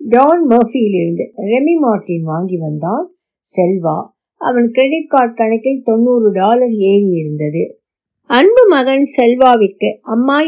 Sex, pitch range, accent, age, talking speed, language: female, 210-265 Hz, native, 50-69, 80 wpm, Tamil